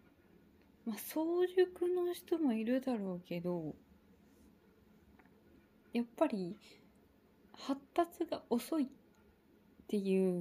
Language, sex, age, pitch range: Japanese, female, 20-39, 190-245 Hz